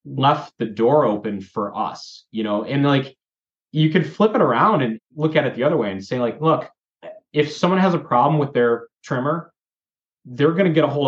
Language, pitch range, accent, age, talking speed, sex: English, 120-150 Hz, American, 20-39, 215 wpm, male